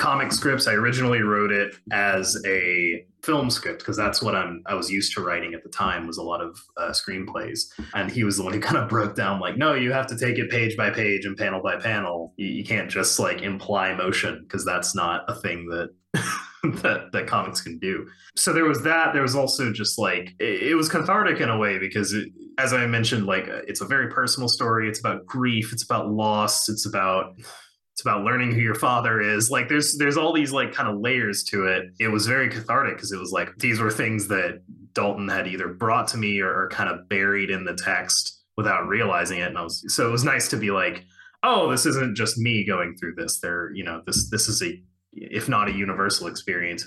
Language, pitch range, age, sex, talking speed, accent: English, 95-125 Hz, 30-49, male, 235 wpm, American